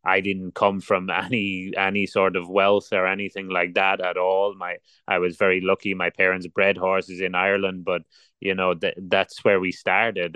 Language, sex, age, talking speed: English, male, 30-49, 195 wpm